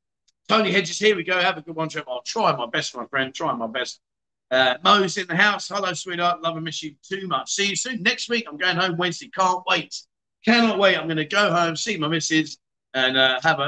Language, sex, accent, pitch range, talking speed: English, male, British, 150-220 Hz, 250 wpm